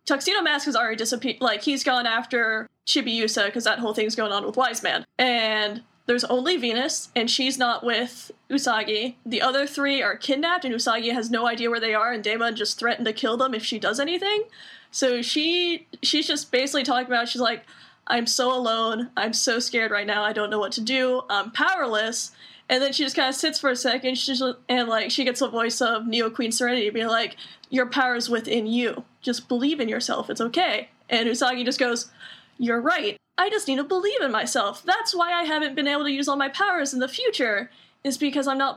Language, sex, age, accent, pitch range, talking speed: English, female, 10-29, American, 230-285 Hz, 225 wpm